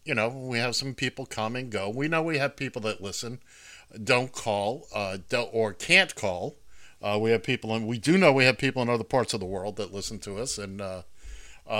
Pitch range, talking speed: 100-130 Hz, 235 wpm